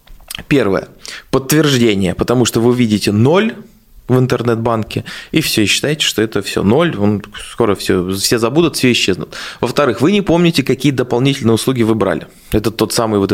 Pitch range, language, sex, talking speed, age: 105-140 Hz, Russian, male, 160 wpm, 20-39